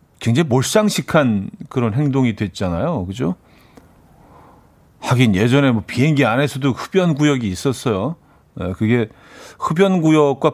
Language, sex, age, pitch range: Korean, male, 40-59, 115-170 Hz